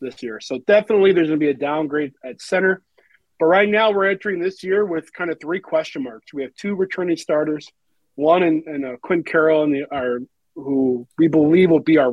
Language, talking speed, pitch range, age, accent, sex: English, 225 wpm, 155-205 Hz, 40-59, American, male